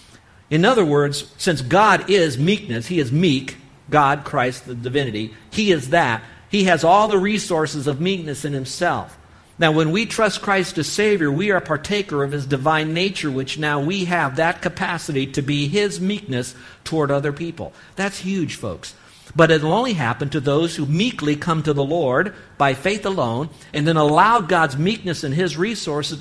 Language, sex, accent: English, male, American